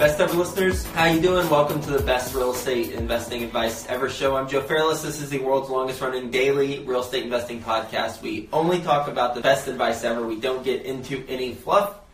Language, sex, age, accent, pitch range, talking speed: English, male, 20-39, American, 105-130 Hz, 215 wpm